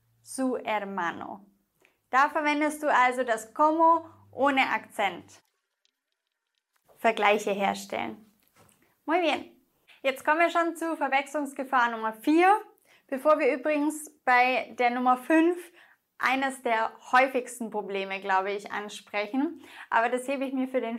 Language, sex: English, female